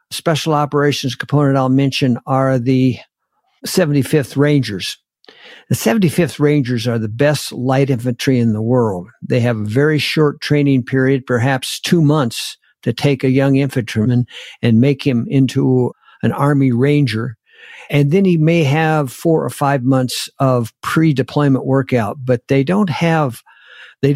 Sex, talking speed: male, 150 wpm